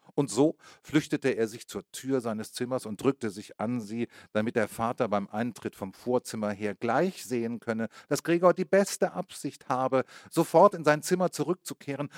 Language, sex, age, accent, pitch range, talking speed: German, male, 40-59, German, 110-150 Hz, 175 wpm